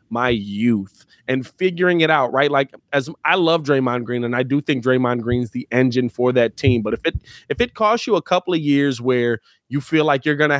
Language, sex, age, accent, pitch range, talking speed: English, male, 20-39, American, 125-160 Hz, 240 wpm